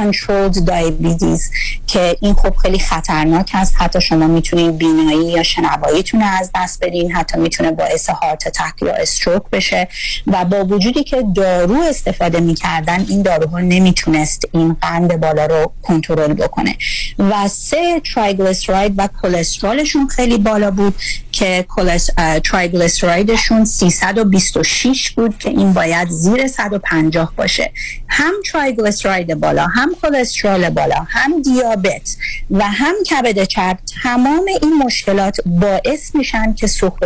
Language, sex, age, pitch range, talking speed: Persian, female, 30-49, 175-235 Hz, 125 wpm